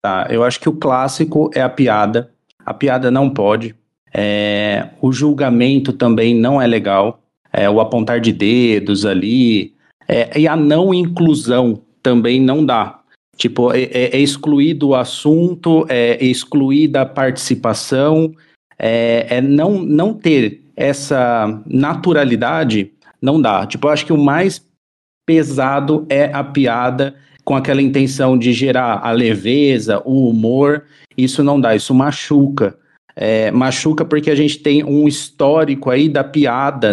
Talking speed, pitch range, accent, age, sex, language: 135 wpm, 120-150 Hz, Brazilian, 40-59, male, Portuguese